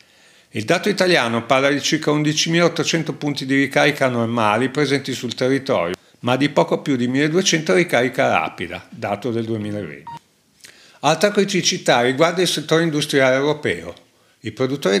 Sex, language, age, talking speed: male, Italian, 50-69, 135 wpm